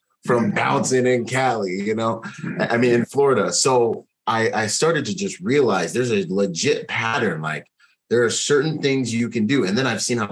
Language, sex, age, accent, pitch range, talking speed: English, male, 30-49, American, 120-175 Hz, 200 wpm